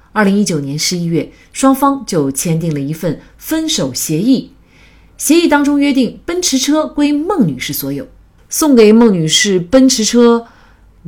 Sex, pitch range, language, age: female, 150-245 Hz, Chinese, 30-49